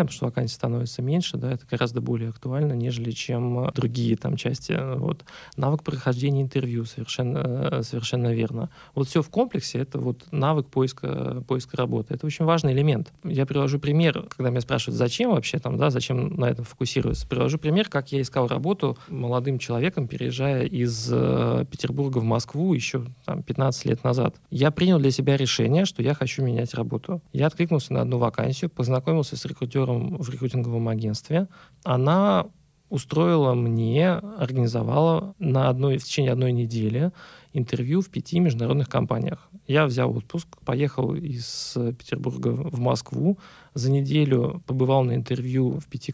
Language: Russian